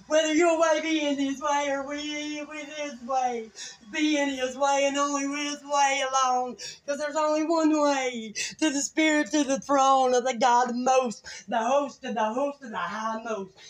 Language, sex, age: English, female, 30-49